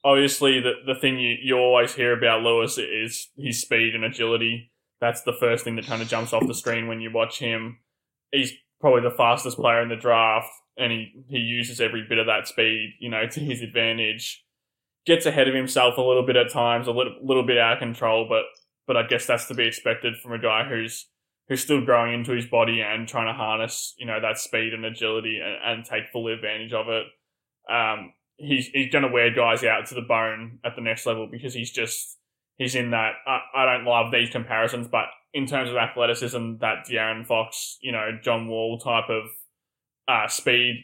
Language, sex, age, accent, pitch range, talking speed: English, male, 20-39, Australian, 115-125 Hz, 215 wpm